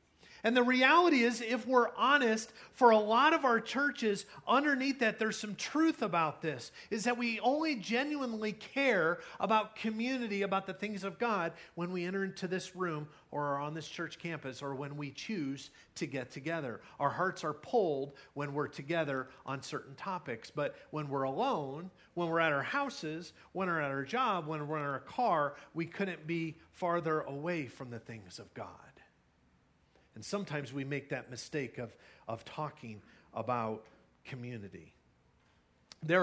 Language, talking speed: English, 170 wpm